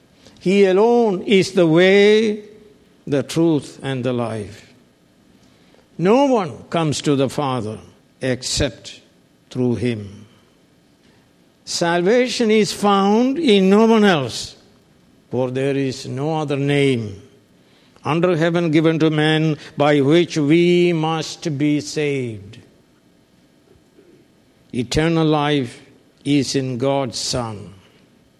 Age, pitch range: 60-79, 130-175 Hz